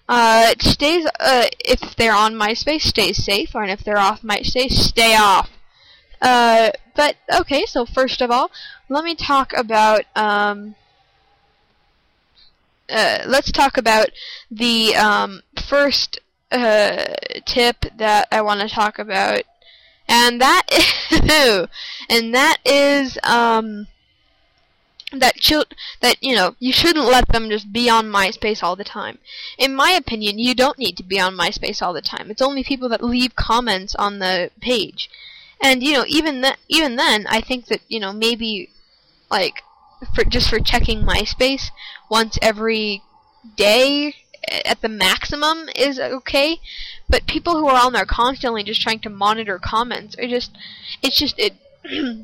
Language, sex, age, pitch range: English, female, 10-29, 215-280 Hz